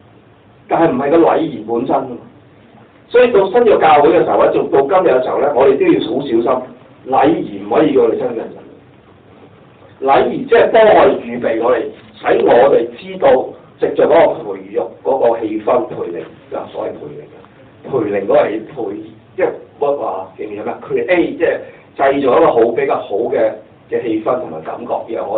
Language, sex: Chinese, male